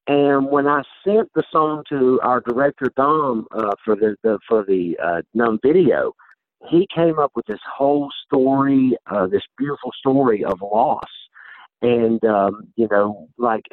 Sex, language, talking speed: male, English, 160 wpm